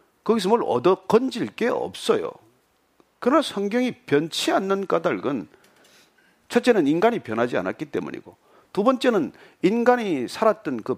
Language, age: Korean, 40-59